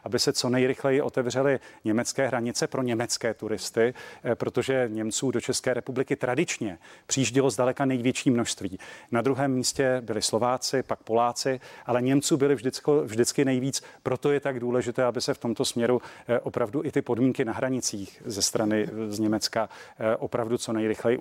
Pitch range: 115-130 Hz